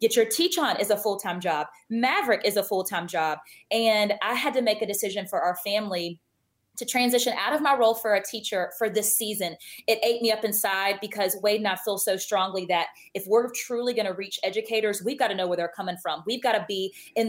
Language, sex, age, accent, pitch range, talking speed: English, female, 20-39, American, 190-235 Hz, 245 wpm